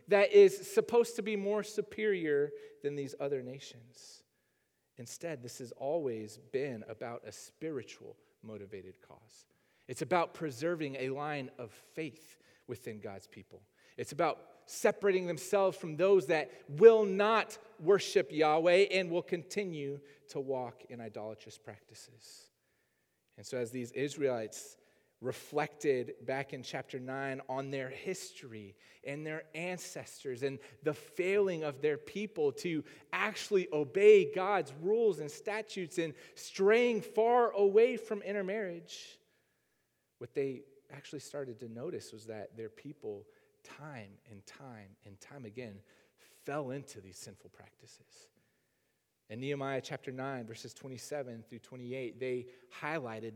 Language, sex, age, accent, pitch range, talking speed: English, male, 30-49, American, 125-200 Hz, 130 wpm